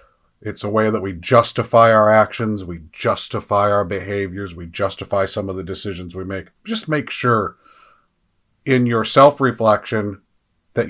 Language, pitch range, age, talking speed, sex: English, 95-115 Hz, 40-59, 150 wpm, male